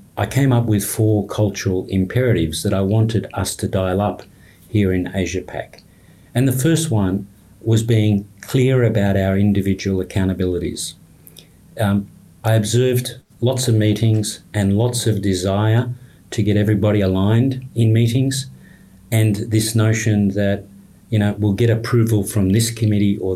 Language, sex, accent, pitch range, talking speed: English, male, Australian, 95-115 Hz, 150 wpm